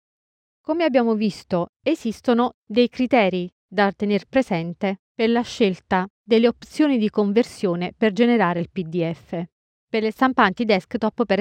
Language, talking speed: Italian, 130 wpm